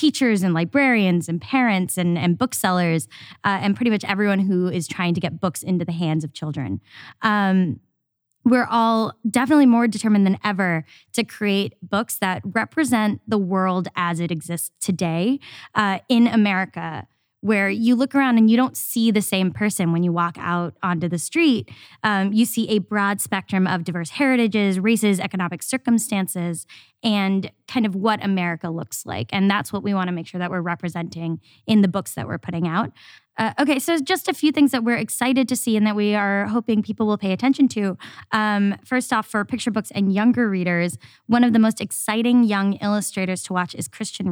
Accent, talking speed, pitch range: American, 190 wpm, 175-225 Hz